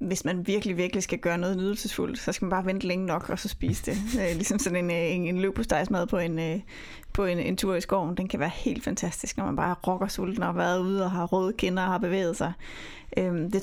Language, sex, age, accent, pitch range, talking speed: Danish, female, 30-49, native, 180-215 Hz, 240 wpm